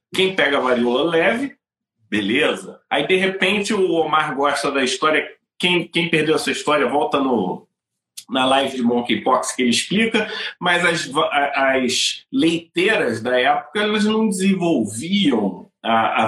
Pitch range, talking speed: 135-190 Hz, 135 wpm